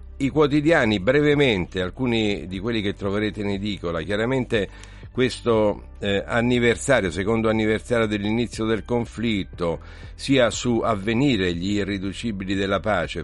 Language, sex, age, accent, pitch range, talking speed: Italian, male, 50-69, native, 90-105 Hz, 120 wpm